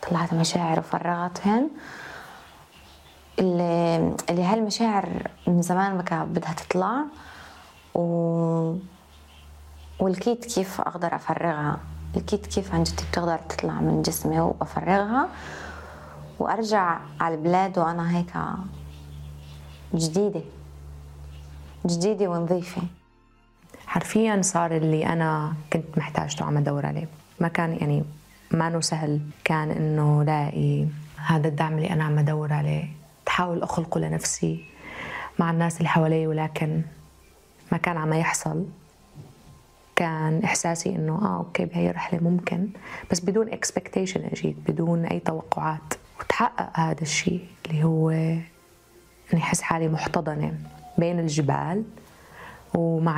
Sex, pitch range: female, 150-175 Hz